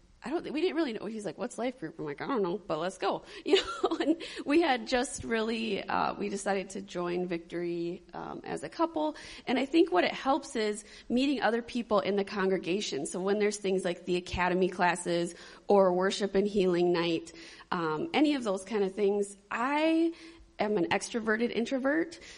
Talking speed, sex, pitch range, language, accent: 200 wpm, female, 185-260 Hz, English, American